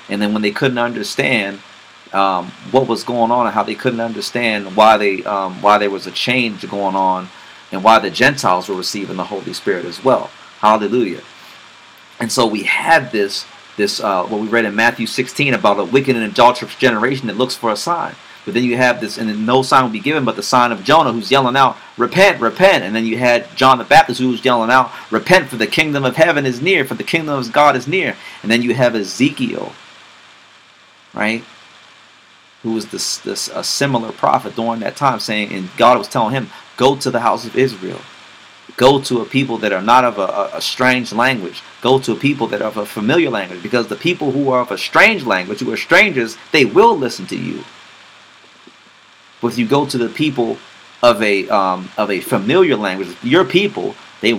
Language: English